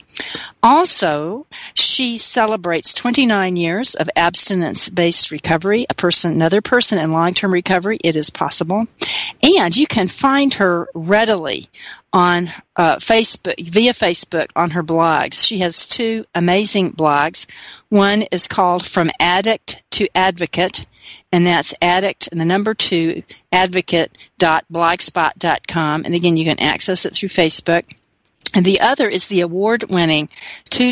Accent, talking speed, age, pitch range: American, 130 wpm, 50-69, 170-205 Hz